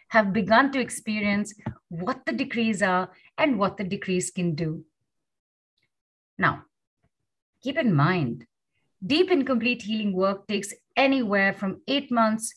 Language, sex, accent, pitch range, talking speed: English, female, Indian, 195-265 Hz, 135 wpm